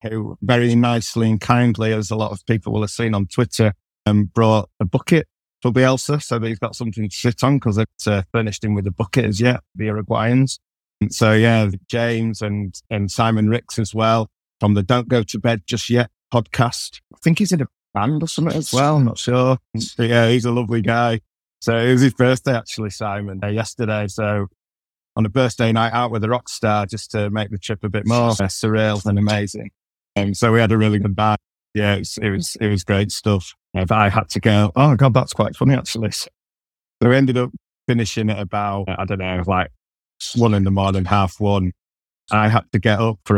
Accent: British